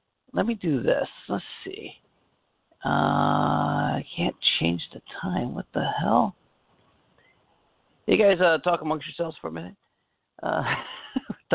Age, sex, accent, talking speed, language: 40-59, male, American, 130 wpm, English